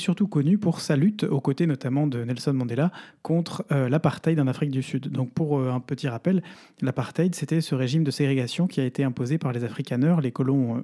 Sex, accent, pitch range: male, French, 130-155 Hz